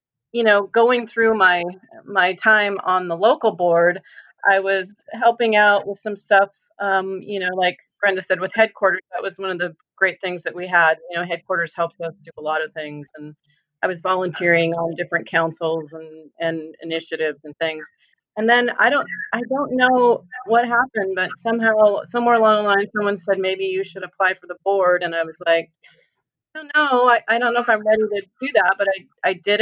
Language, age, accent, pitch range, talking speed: English, 30-49, American, 180-220 Hz, 210 wpm